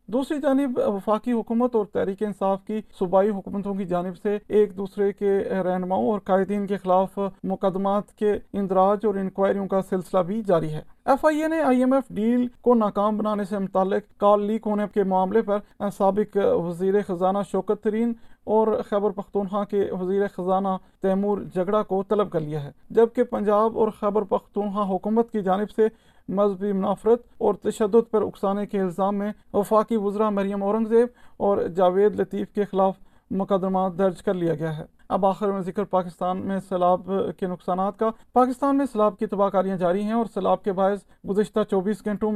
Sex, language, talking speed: male, Urdu, 180 wpm